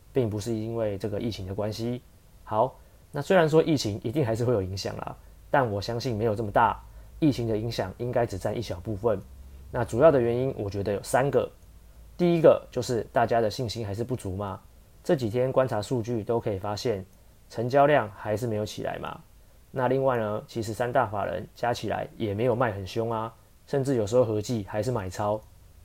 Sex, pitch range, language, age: male, 105-125 Hz, Chinese, 20-39